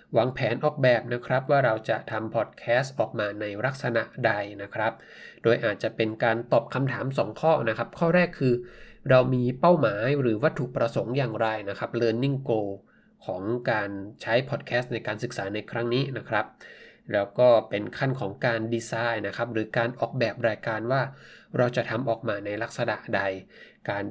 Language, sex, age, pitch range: Thai, male, 20-39, 110-130 Hz